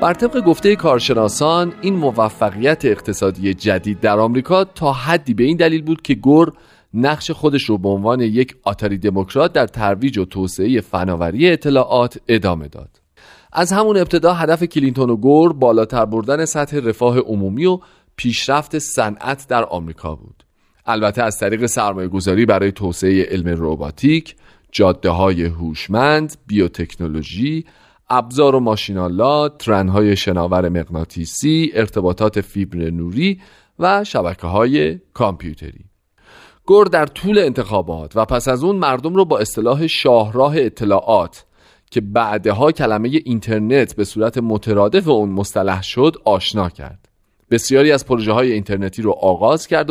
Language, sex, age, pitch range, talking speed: Persian, male, 40-59, 95-150 Hz, 130 wpm